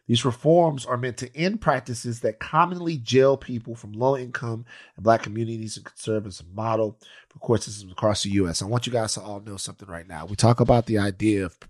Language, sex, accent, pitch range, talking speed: English, male, American, 95-125 Hz, 220 wpm